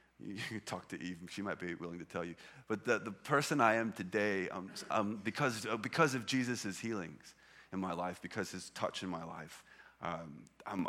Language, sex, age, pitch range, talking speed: English, male, 30-49, 90-115 Hz, 205 wpm